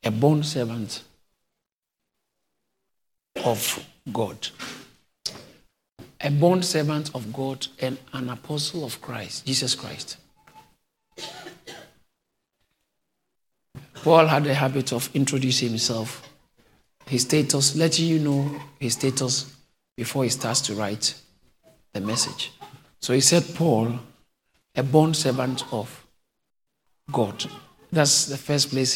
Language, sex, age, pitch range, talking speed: English, male, 50-69, 115-145 Hz, 105 wpm